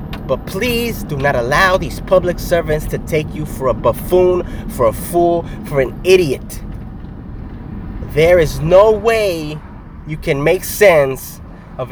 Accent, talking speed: American, 145 wpm